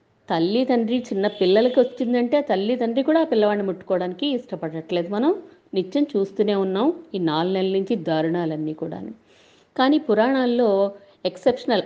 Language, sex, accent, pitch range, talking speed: Telugu, female, native, 170-245 Hz, 130 wpm